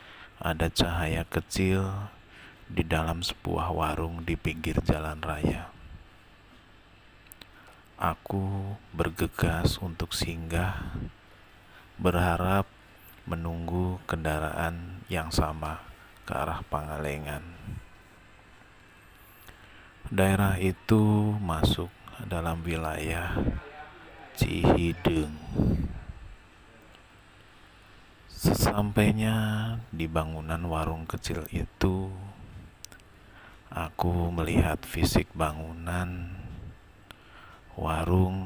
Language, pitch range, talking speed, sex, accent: Indonesian, 80-100 Hz, 60 wpm, male, native